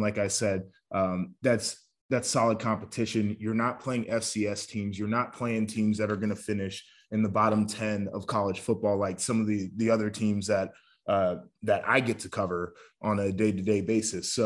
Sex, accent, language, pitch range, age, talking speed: male, American, English, 105-130 Hz, 20-39, 200 wpm